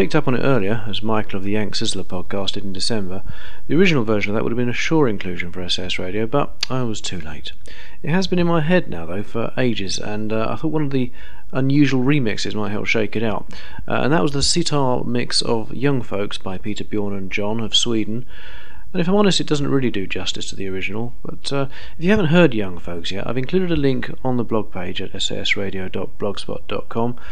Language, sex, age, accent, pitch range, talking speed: English, male, 40-59, British, 100-135 Hz, 235 wpm